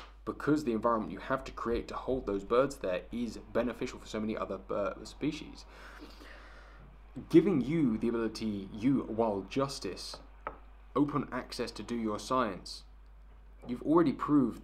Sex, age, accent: male, 20-39, British